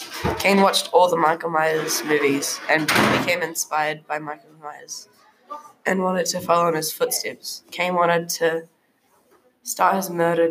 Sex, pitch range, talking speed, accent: female, 155-250 Hz, 150 wpm, Australian